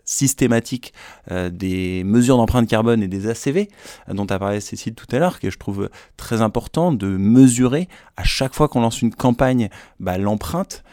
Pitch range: 105-130 Hz